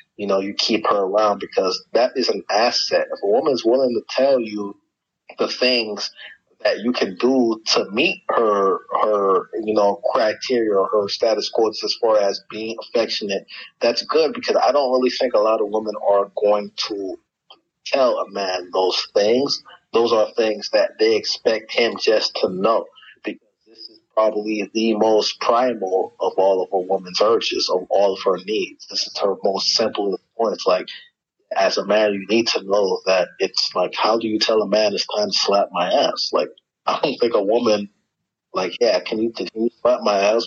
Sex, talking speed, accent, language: male, 190 wpm, American, English